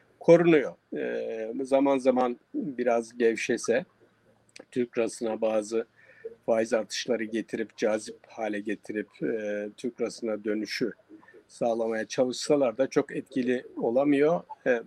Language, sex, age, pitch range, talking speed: German, male, 50-69, 115-150 Hz, 105 wpm